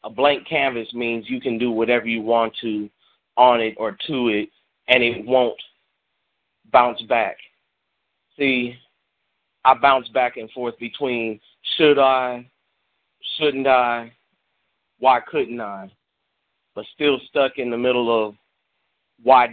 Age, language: 30-49, English